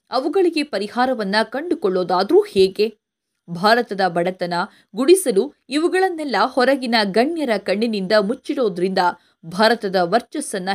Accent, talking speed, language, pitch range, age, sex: native, 80 wpm, Kannada, 200-290 Hz, 20-39, female